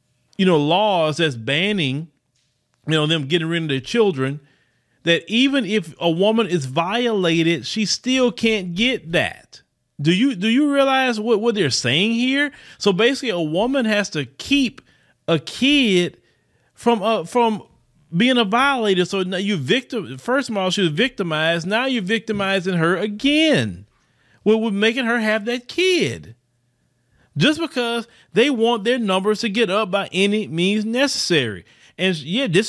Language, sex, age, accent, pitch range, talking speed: English, male, 40-59, American, 165-235 Hz, 160 wpm